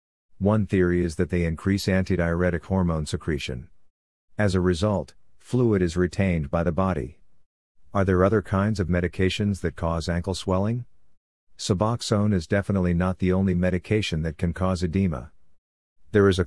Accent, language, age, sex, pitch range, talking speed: American, English, 50-69, male, 85-100 Hz, 155 wpm